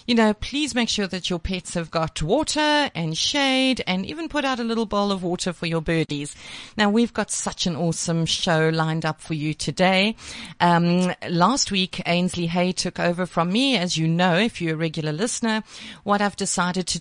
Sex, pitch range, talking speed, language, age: female, 175-230 Hz, 205 wpm, English, 40-59